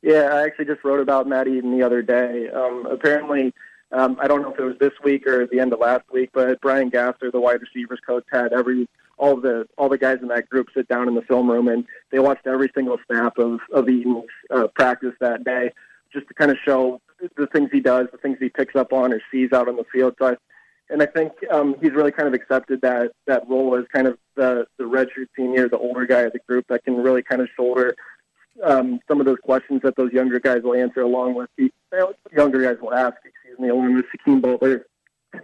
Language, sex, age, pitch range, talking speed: English, male, 20-39, 125-135 Hz, 245 wpm